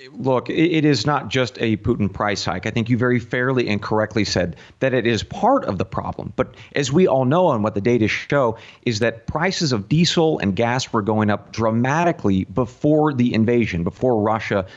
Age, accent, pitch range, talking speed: 40-59, American, 105-135 Hz, 205 wpm